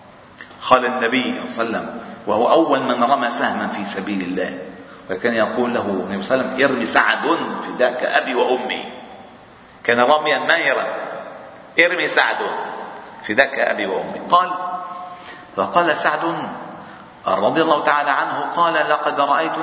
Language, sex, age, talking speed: Arabic, male, 50-69, 140 wpm